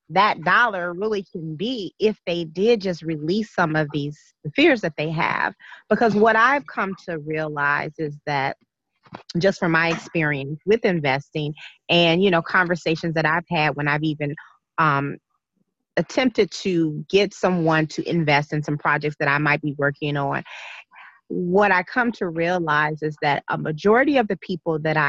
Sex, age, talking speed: female, 30-49, 165 wpm